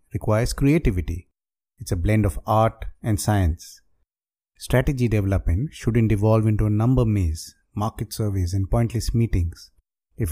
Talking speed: 135 wpm